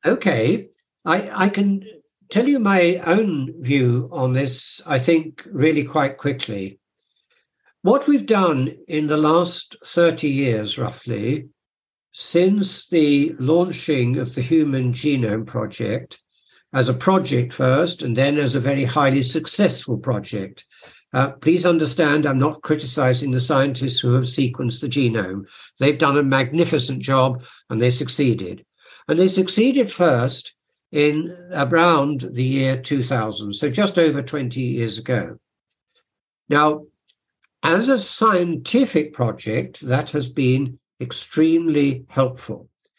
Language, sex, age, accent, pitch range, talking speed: English, male, 60-79, British, 130-165 Hz, 125 wpm